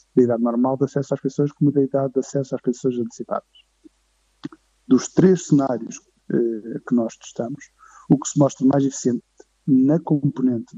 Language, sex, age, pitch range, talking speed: Portuguese, male, 50-69, 120-145 Hz, 165 wpm